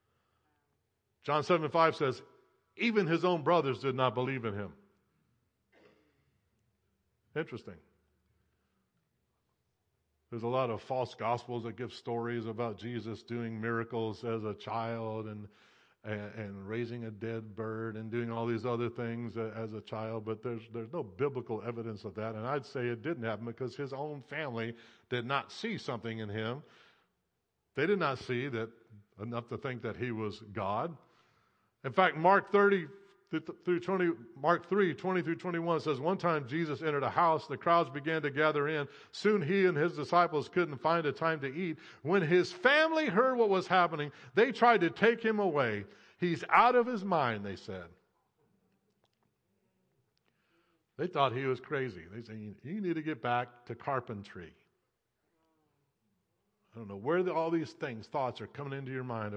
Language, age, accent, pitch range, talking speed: English, 50-69, American, 115-165 Hz, 165 wpm